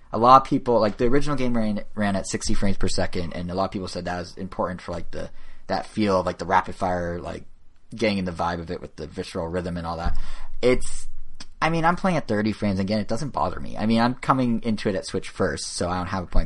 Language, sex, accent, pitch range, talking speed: English, male, American, 90-110 Hz, 275 wpm